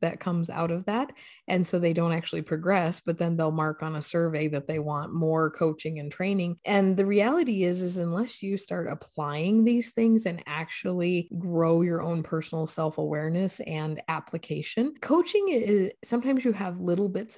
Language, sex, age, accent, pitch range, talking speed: English, female, 30-49, American, 170-210 Hz, 180 wpm